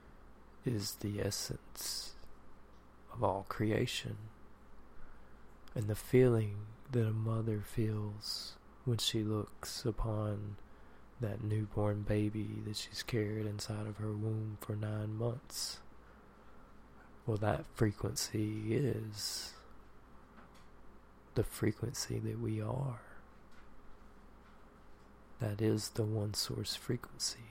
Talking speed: 100 wpm